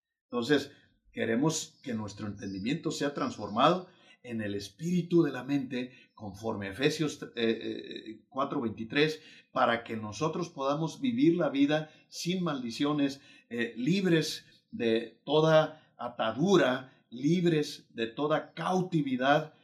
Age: 50-69